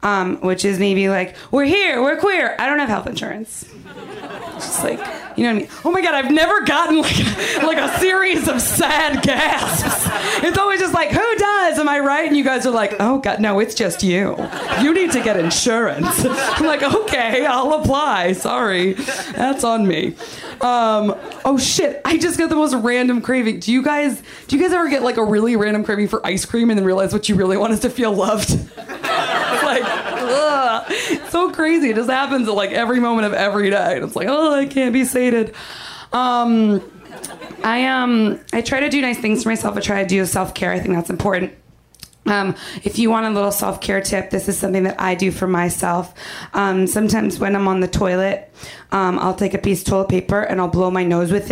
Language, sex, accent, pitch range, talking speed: English, female, American, 195-275 Hz, 215 wpm